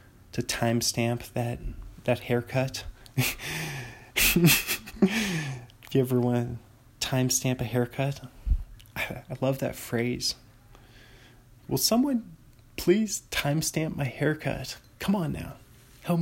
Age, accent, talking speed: 20-39, American, 100 wpm